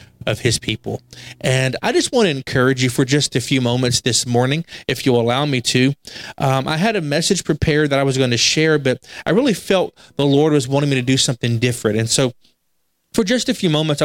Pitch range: 125-155 Hz